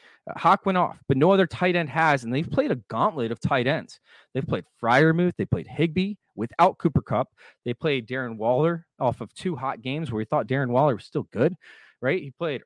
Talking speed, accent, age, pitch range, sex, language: 220 wpm, American, 30-49, 125-165 Hz, male, English